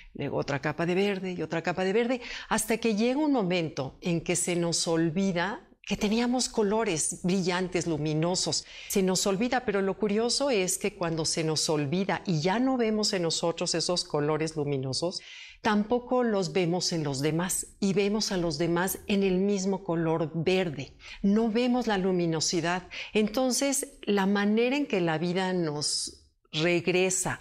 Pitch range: 170-210 Hz